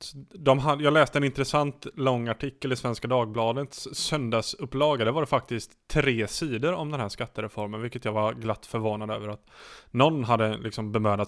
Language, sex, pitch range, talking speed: English, male, 110-140 Hz, 170 wpm